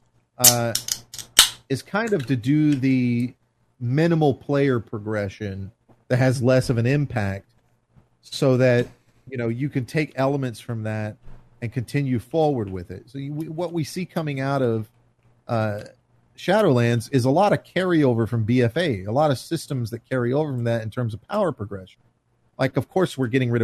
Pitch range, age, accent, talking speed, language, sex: 115-140 Hz, 40-59, American, 175 wpm, English, male